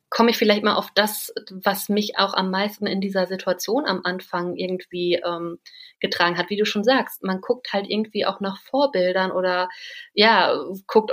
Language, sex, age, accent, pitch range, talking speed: German, female, 30-49, German, 190-230 Hz, 185 wpm